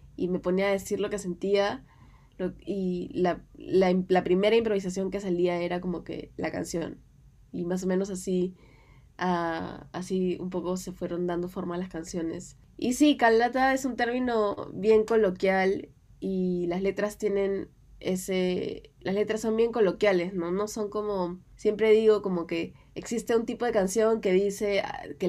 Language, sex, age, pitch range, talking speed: Spanish, female, 20-39, 175-205 Hz, 170 wpm